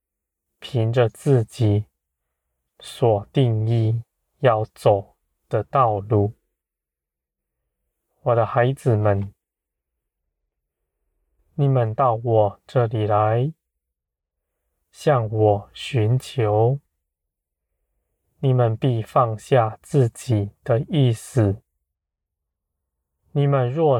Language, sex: Chinese, male